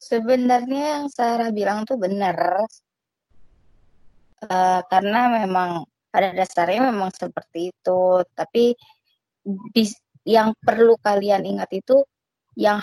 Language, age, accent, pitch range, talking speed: Indonesian, 20-39, native, 180-220 Hz, 105 wpm